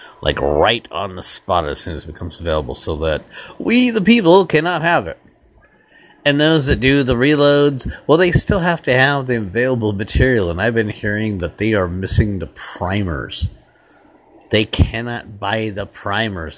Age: 50-69